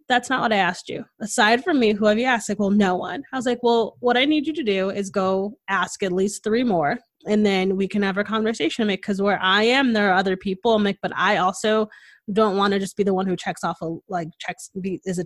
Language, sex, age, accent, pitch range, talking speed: English, female, 20-39, American, 190-235 Hz, 270 wpm